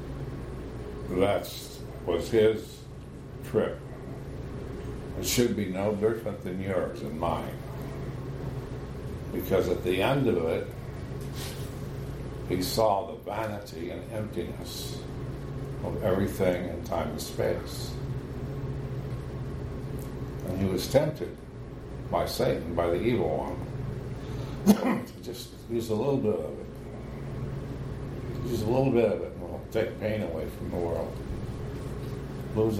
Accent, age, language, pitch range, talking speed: American, 60-79, English, 105-135 Hz, 115 wpm